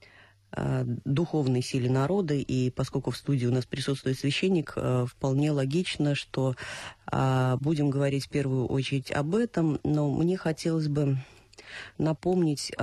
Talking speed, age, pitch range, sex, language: 120 wpm, 30-49, 125-150 Hz, female, Russian